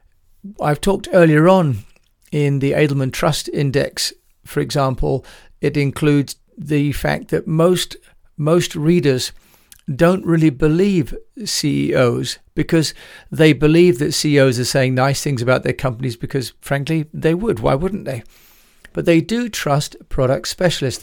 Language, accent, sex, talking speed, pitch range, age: English, British, male, 135 wpm, 135-165 Hz, 40-59